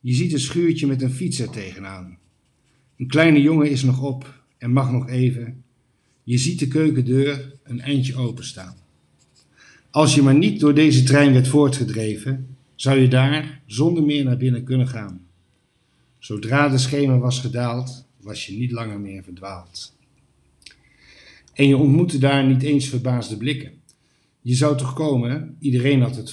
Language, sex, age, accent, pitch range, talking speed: Dutch, male, 50-69, Dutch, 115-140 Hz, 160 wpm